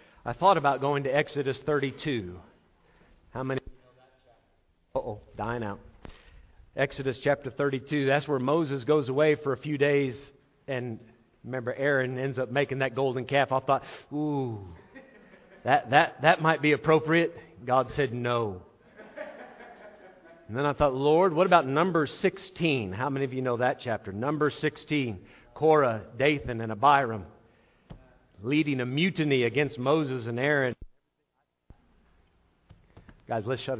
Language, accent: English, American